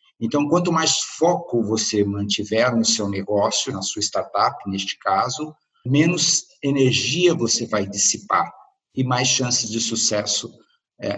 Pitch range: 115-145 Hz